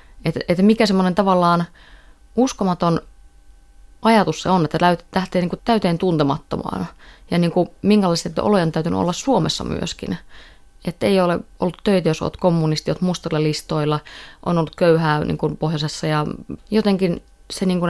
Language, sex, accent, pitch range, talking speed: Finnish, female, native, 150-180 Hz, 145 wpm